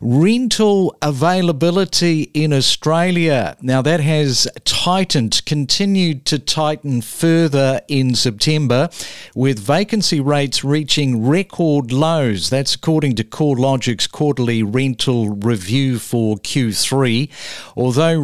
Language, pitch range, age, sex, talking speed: English, 125-150 Hz, 50-69, male, 100 wpm